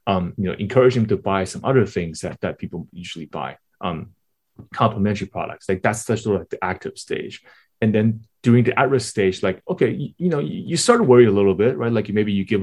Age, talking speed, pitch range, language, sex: 20-39, 245 wpm, 95-125 Hz, English, male